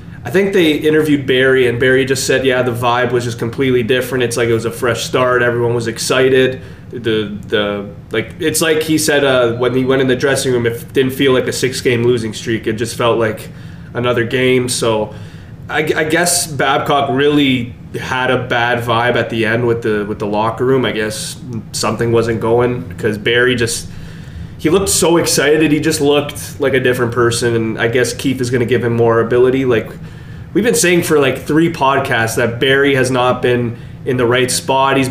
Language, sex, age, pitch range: English, male, 20-39, 115-140 Hz